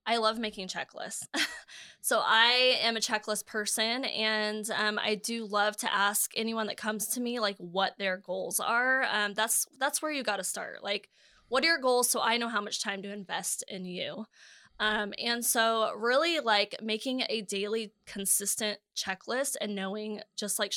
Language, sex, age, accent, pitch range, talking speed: English, female, 20-39, American, 195-225 Hz, 185 wpm